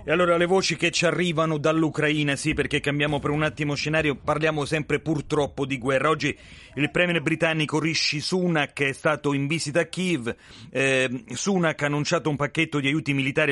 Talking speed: 180 wpm